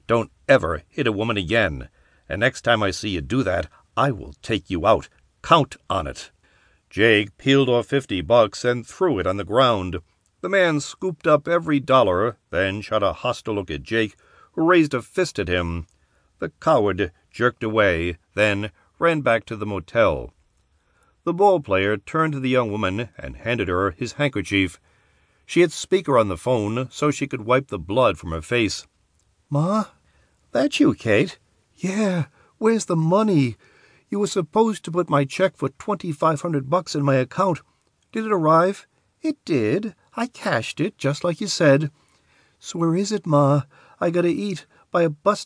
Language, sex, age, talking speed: English, male, 60-79, 175 wpm